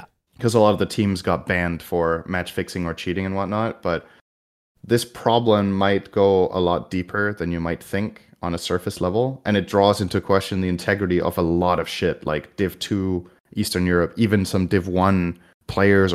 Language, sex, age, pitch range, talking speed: English, male, 20-39, 90-110 Hz, 195 wpm